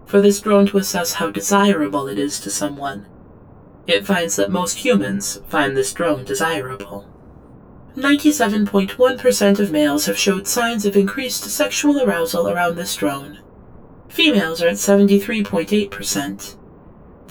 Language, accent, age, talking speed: English, American, 30-49, 130 wpm